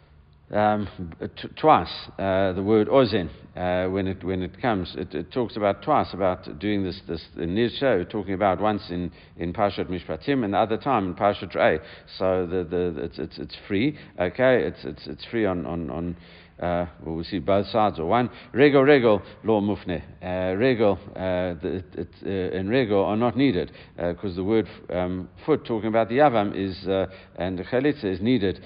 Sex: male